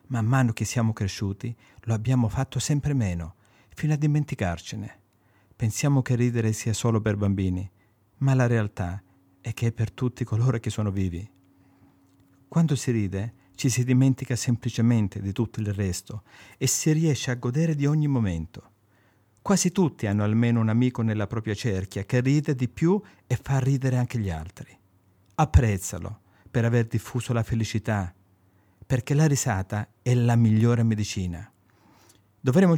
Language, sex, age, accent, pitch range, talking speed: Italian, male, 50-69, native, 100-130 Hz, 155 wpm